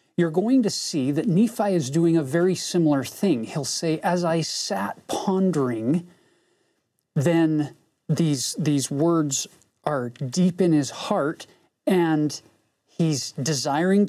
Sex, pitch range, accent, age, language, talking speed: male, 140-175 Hz, American, 40-59, English, 130 wpm